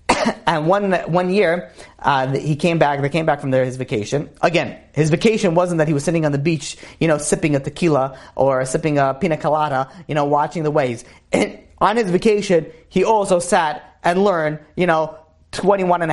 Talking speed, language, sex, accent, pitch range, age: 200 wpm, English, male, American, 150-195 Hz, 30-49